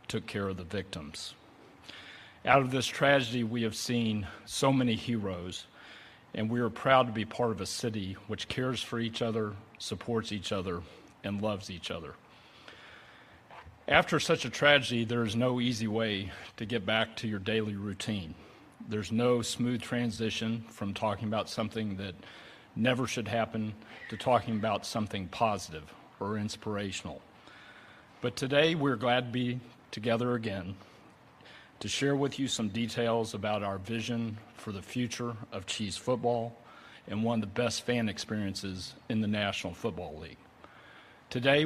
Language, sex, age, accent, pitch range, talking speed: English, male, 40-59, American, 100-120 Hz, 155 wpm